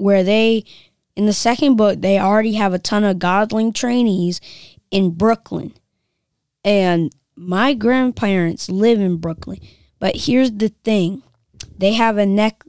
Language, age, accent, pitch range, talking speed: English, 20-39, American, 180-225 Hz, 140 wpm